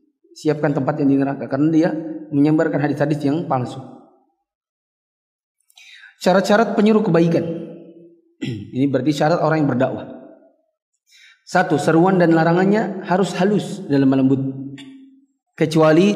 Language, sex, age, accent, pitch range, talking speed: Indonesian, male, 30-49, native, 160-225 Hz, 105 wpm